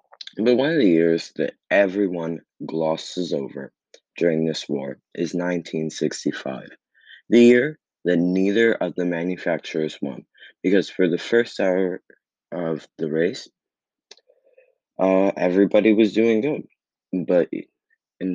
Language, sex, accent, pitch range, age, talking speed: English, male, American, 80-100 Hz, 20-39, 120 wpm